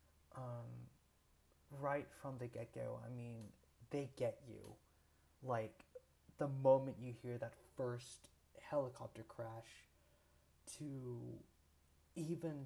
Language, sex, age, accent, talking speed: English, male, 30-49, American, 100 wpm